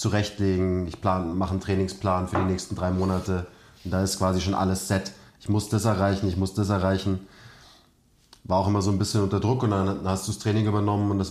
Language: German